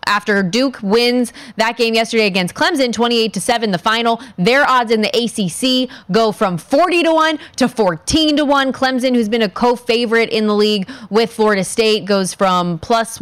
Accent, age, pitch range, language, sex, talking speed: American, 20-39, 200-245 Hz, English, female, 170 wpm